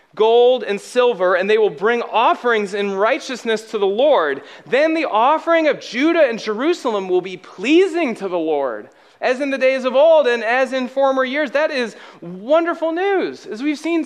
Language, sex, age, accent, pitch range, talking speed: English, male, 30-49, American, 225-305 Hz, 190 wpm